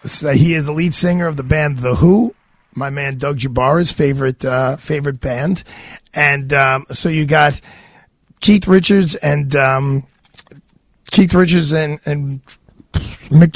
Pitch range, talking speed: 130-160 Hz, 140 wpm